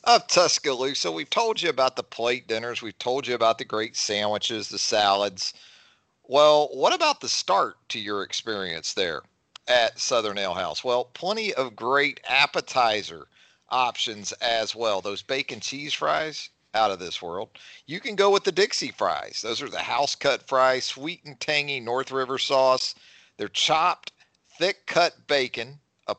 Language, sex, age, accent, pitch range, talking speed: English, male, 50-69, American, 110-145 Hz, 165 wpm